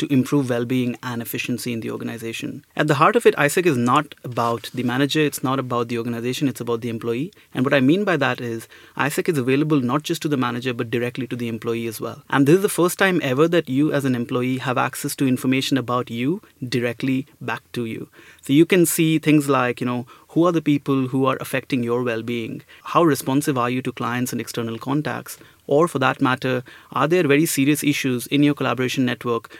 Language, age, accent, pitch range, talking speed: English, 30-49, Indian, 125-150 Hz, 225 wpm